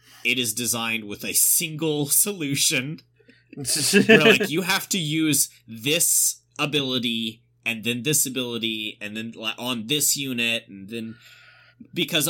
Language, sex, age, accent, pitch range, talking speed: English, male, 20-39, American, 110-130 Hz, 120 wpm